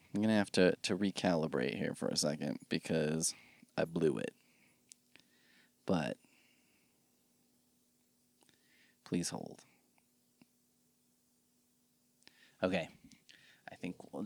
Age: 20-39